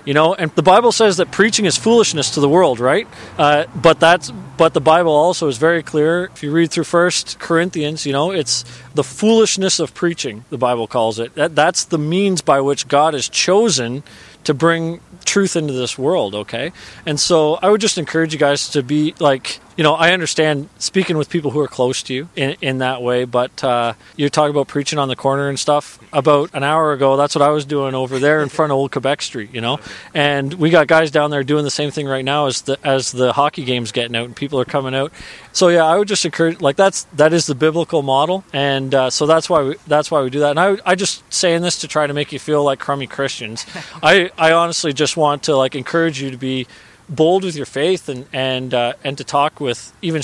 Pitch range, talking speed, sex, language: 135-165 Hz, 240 wpm, male, English